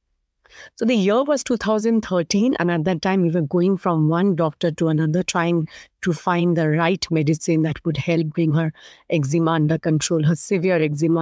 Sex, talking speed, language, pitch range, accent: female, 180 wpm, English, 165-190 Hz, Indian